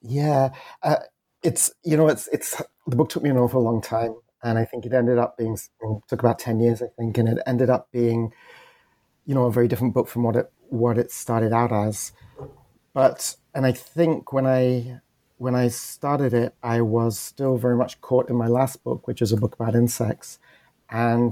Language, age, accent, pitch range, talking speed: English, 30-49, British, 115-130 Hz, 210 wpm